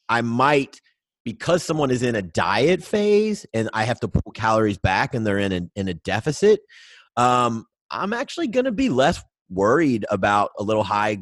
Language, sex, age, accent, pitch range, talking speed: English, male, 30-49, American, 95-115 Hz, 185 wpm